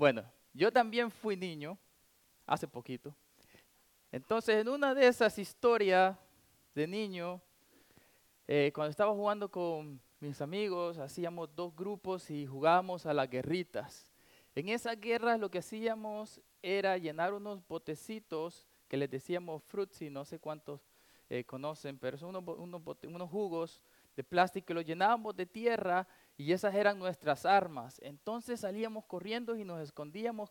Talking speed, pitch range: 145 wpm, 155-215 Hz